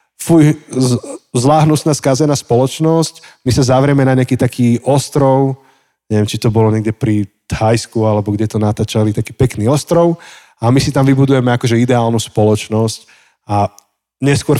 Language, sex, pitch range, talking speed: Slovak, male, 115-140 Hz, 150 wpm